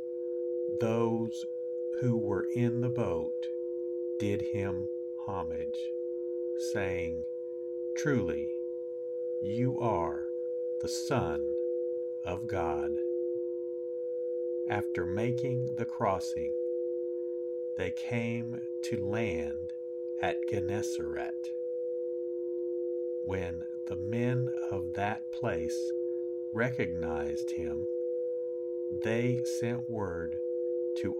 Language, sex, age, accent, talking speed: English, male, 60-79, American, 75 wpm